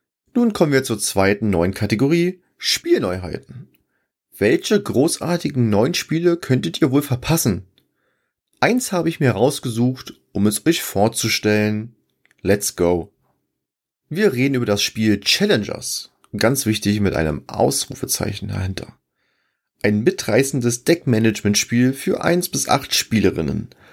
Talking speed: 115 wpm